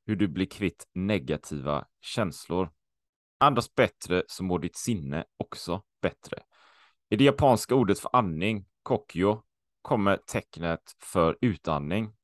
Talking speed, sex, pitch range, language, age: 125 wpm, male, 85-110 Hz, Swedish, 30-49